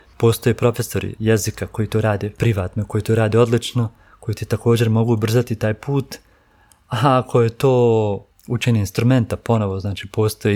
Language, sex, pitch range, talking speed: Croatian, male, 105-115 Hz, 155 wpm